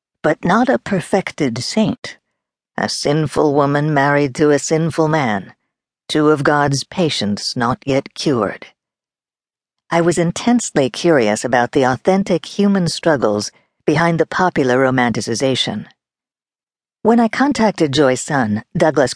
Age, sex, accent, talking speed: 60-79, female, American, 120 wpm